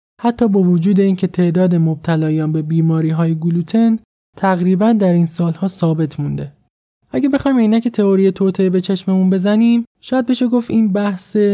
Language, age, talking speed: Persian, 20-39, 155 wpm